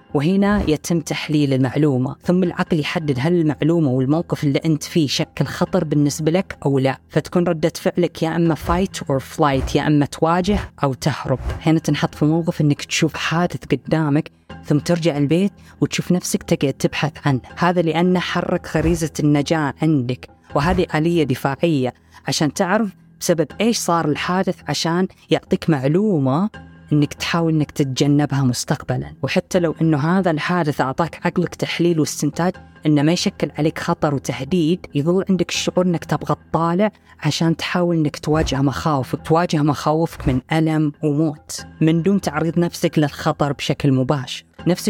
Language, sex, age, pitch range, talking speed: Arabic, female, 20-39, 145-175 Hz, 145 wpm